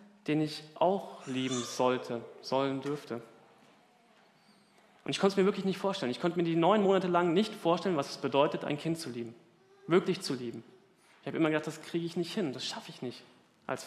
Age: 30-49